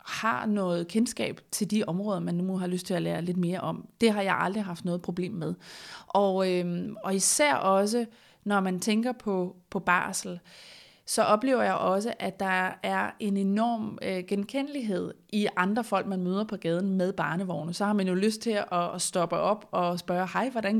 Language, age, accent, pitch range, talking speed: Danish, 30-49, native, 185-220 Hz, 195 wpm